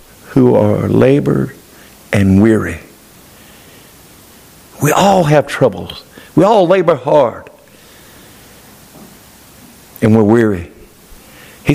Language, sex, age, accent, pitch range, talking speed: English, male, 60-79, American, 140-180 Hz, 85 wpm